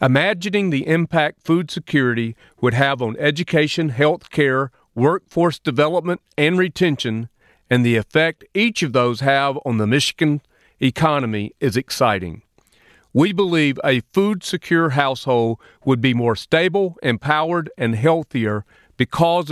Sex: male